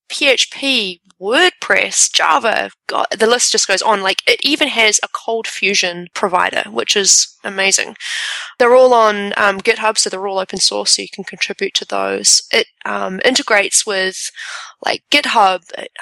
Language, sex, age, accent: English, female, 20-39, Australian